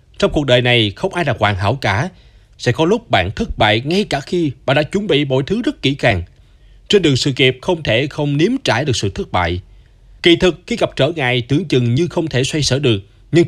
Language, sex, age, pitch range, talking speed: Vietnamese, male, 20-39, 110-165 Hz, 250 wpm